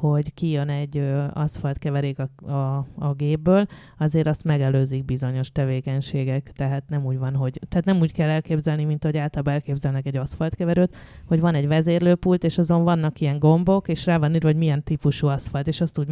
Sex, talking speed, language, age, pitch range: female, 185 wpm, English, 20-39, 145-175 Hz